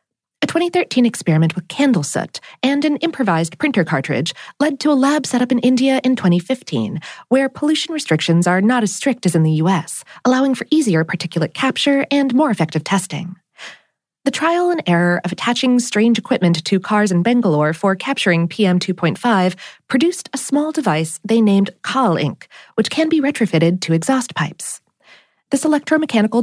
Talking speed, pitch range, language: 165 wpm, 175-270 Hz, English